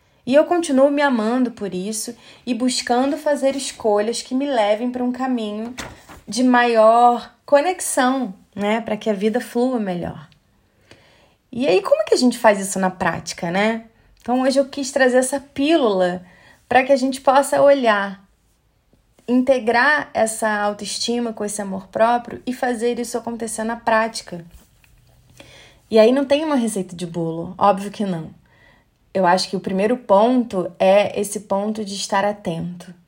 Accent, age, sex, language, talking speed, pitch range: Brazilian, 20-39, female, Portuguese, 160 wpm, 185-240 Hz